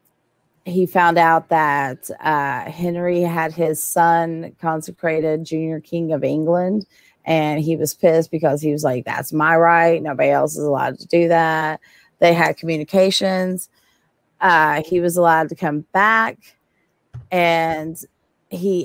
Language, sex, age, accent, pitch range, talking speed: English, female, 30-49, American, 155-185 Hz, 140 wpm